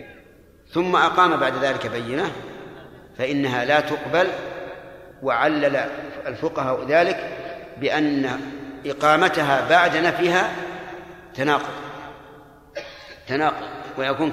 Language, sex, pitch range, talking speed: Arabic, male, 140-170 Hz, 70 wpm